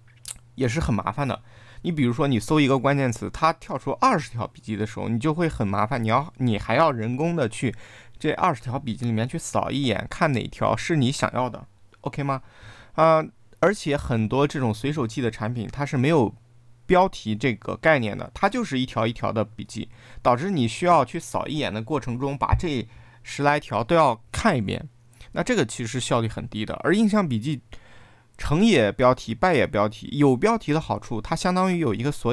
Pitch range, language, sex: 110-145 Hz, Chinese, male